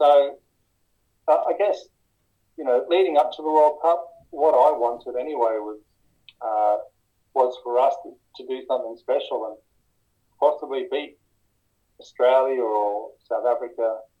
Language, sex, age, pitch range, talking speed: English, male, 30-49, 115-150 Hz, 140 wpm